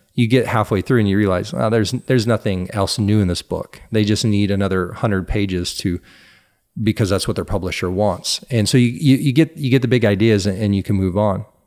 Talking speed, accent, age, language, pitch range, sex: 230 wpm, American, 40-59, English, 100-120 Hz, male